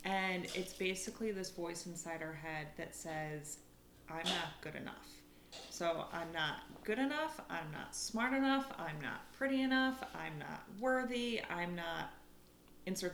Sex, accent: female, American